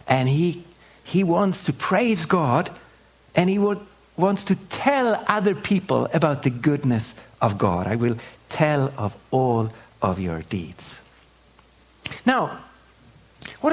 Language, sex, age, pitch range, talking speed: English, male, 60-79, 120-195 Hz, 130 wpm